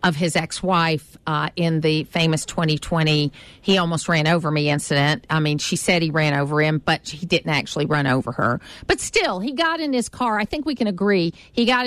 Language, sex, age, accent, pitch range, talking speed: English, female, 50-69, American, 160-205 Hz, 215 wpm